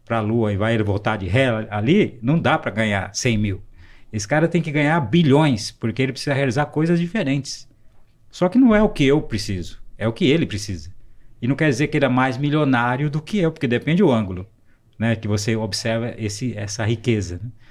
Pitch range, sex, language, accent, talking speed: 110-150 Hz, male, Portuguese, Brazilian, 215 wpm